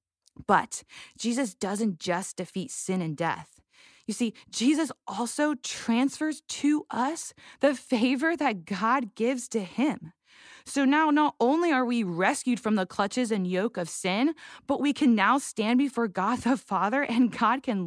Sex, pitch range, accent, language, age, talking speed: female, 195-265 Hz, American, English, 20-39, 160 wpm